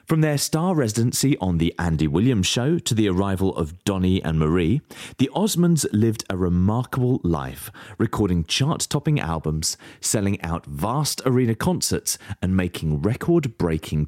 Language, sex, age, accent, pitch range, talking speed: English, male, 30-49, British, 85-130 Hz, 140 wpm